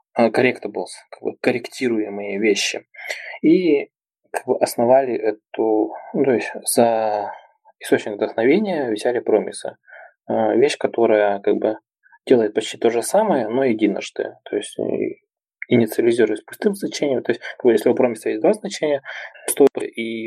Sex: male